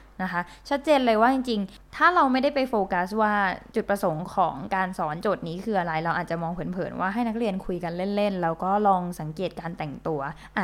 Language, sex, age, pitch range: Thai, female, 20-39, 175-230 Hz